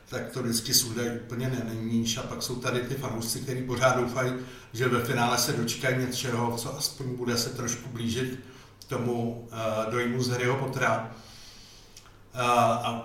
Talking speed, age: 150 wpm, 60-79